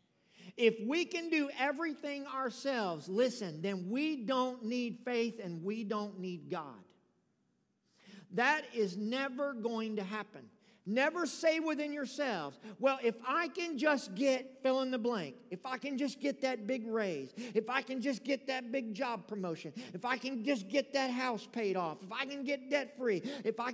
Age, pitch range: 50-69, 205-265 Hz